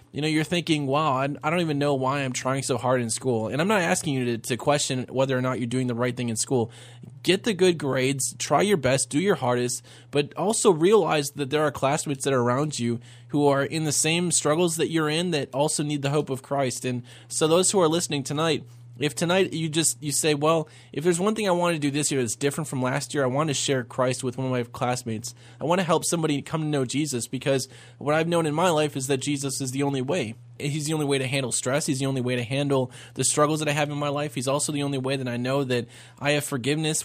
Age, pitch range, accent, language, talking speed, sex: 20-39, 125-155 Hz, American, English, 270 wpm, male